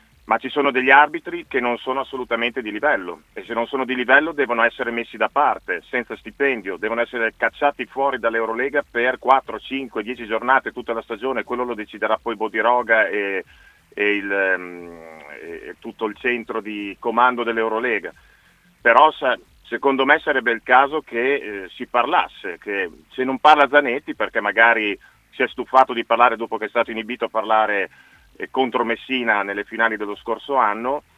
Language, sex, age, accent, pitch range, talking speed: Italian, male, 40-59, native, 110-130 Hz, 170 wpm